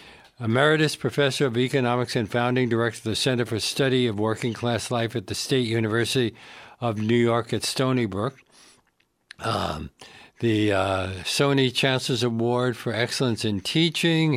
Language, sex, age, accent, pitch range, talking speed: English, male, 60-79, American, 110-130 Hz, 145 wpm